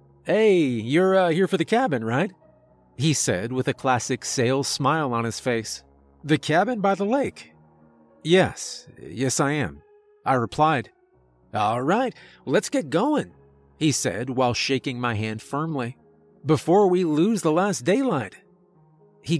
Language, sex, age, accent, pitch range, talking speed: English, male, 40-59, American, 120-160 Hz, 150 wpm